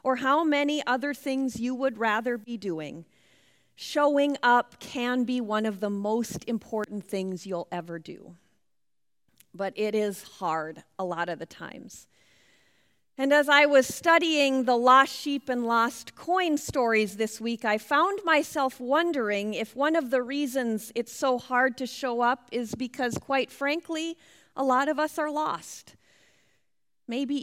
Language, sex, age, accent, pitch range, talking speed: English, female, 40-59, American, 205-265 Hz, 160 wpm